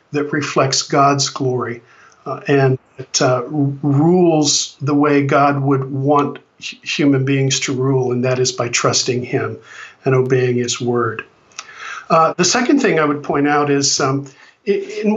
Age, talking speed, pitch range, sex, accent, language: 50-69, 150 wpm, 140-160 Hz, male, American, English